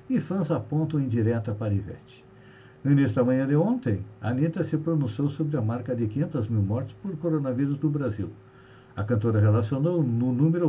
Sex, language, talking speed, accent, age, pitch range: male, Portuguese, 185 wpm, Brazilian, 60-79, 115-150 Hz